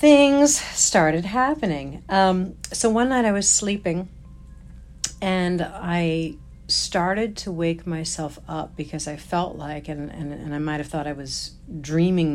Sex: female